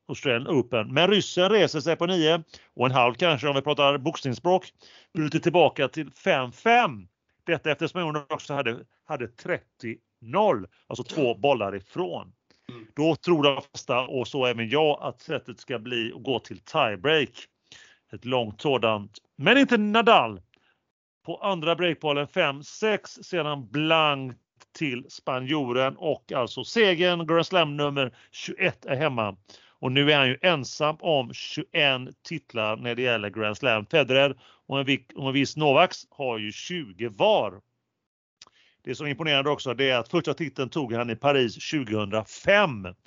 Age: 40-59